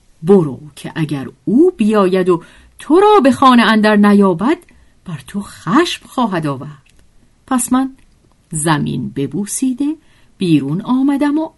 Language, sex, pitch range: Persian, female, 160-250 Hz